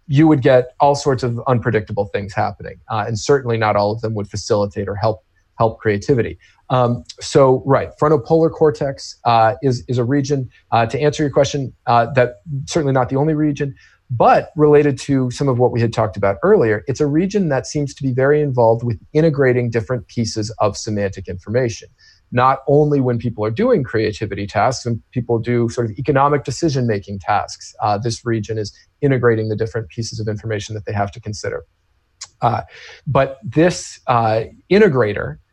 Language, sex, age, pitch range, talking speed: English, male, 40-59, 110-140 Hz, 180 wpm